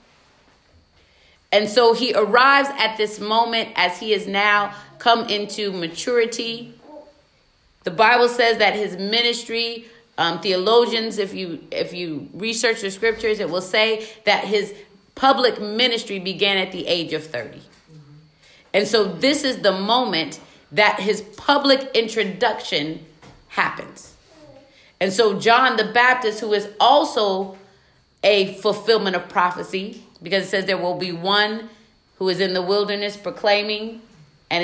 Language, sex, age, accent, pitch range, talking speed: English, female, 30-49, American, 180-225 Hz, 135 wpm